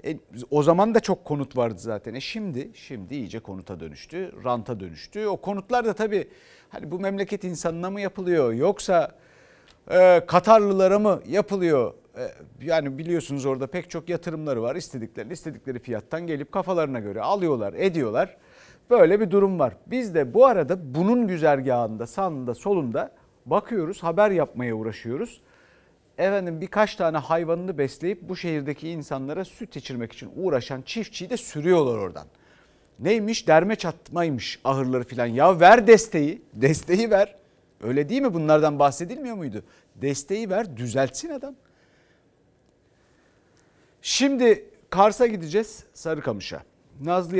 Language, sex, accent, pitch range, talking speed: Turkish, male, native, 135-200 Hz, 130 wpm